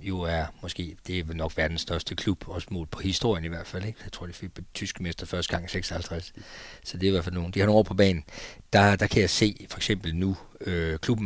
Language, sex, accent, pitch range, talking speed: Danish, male, native, 90-105 Hz, 260 wpm